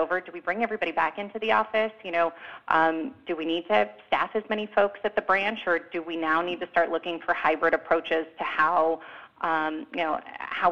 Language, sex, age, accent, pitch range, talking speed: English, female, 30-49, American, 165-180 Hz, 225 wpm